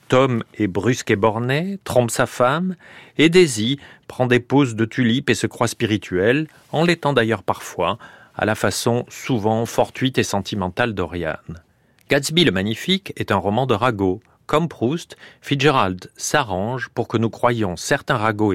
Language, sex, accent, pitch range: French, male, French, 100-130 Hz